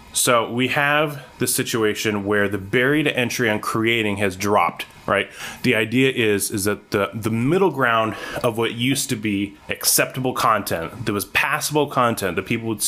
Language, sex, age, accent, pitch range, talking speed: English, male, 20-39, American, 105-130 Hz, 175 wpm